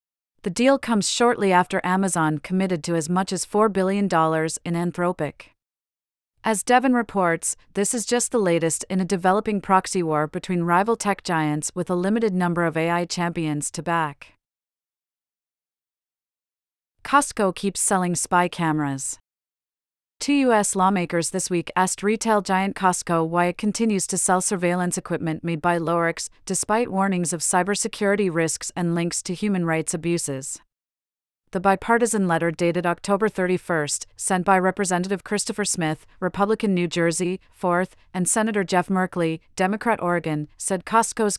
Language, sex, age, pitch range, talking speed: English, female, 40-59, 170-200 Hz, 145 wpm